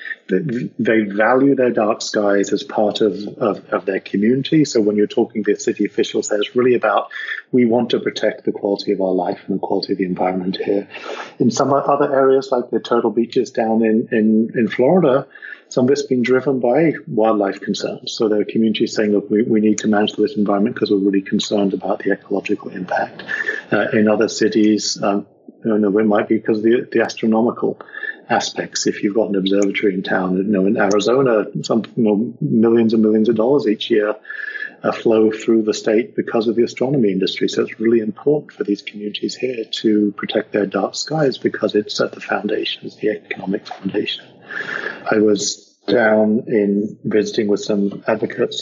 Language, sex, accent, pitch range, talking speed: English, male, British, 105-115 Hz, 195 wpm